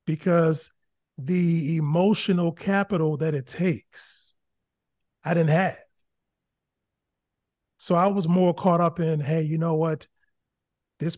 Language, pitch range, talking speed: English, 150-175 Hz, 120 wpm